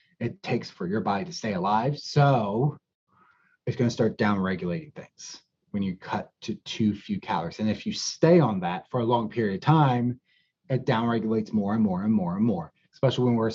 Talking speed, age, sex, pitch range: 210 wpm, 30-49, male, 100-140 Hz